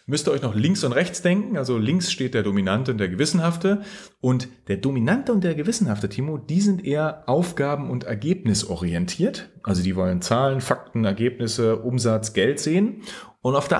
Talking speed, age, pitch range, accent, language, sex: 180 wpm, 30-49, 110-175 Hz, German, German, male